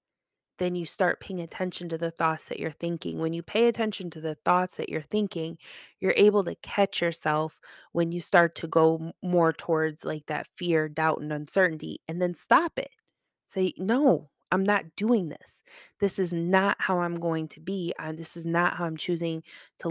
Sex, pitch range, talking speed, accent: female, 160-190 Hz, 195 wpm, American